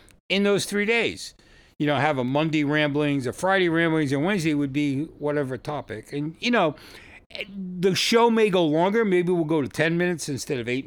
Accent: American